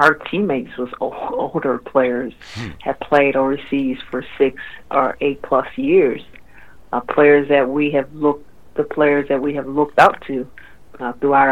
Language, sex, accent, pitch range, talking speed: English, female, American, 135-150 Hz, 155 wpm